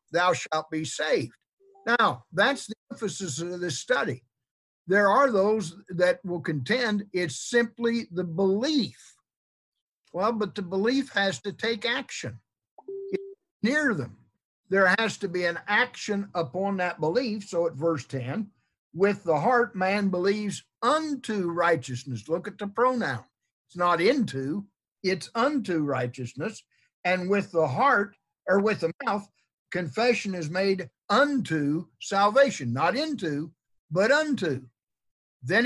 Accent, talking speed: American, 135 wpm